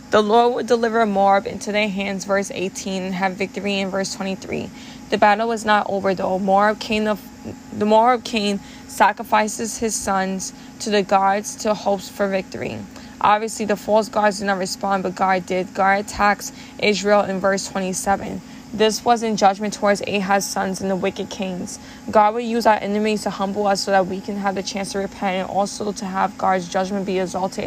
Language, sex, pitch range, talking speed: English, female, 195-230 Hz, 190 wpm